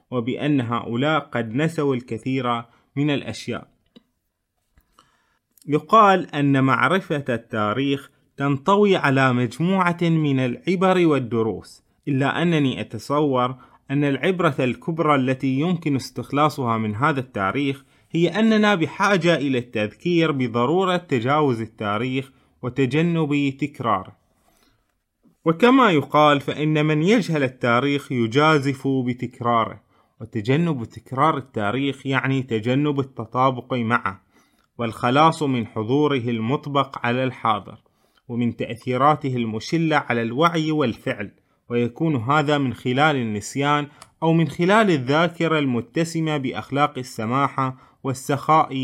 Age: 20-39